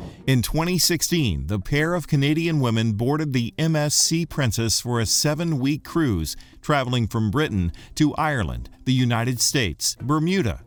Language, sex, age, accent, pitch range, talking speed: English, male, 50-69, American, 105-150 Hz, 135 wpm